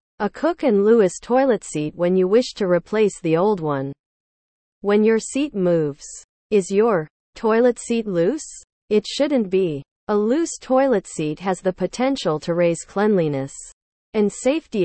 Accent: American